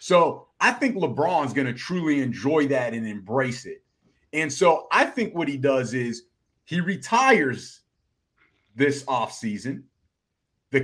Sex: male